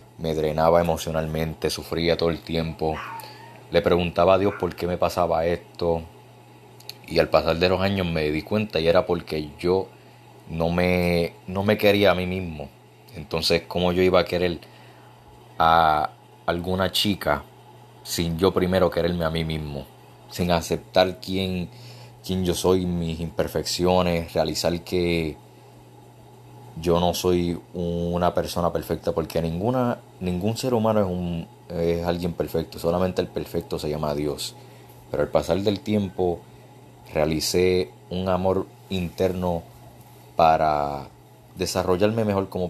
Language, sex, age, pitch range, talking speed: Spanish, male, 30-49, 80-90 Hz, 135 wpm